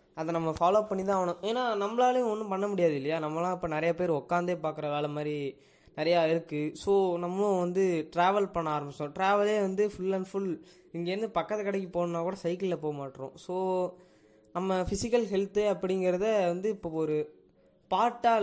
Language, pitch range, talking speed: Tamil, 165-205 Hz, 165 wpm